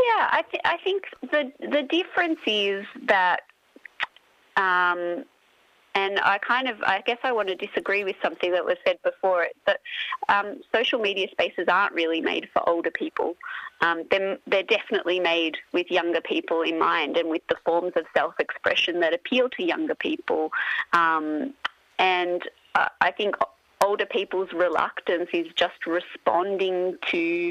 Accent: Australian